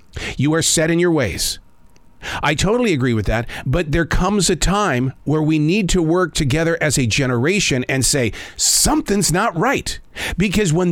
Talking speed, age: 175 wpm, 40-59